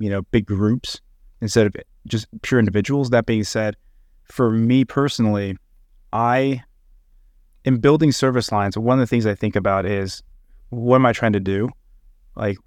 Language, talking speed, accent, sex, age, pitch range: English, 165 wpm, American, male, 30-49, 105-125 Hz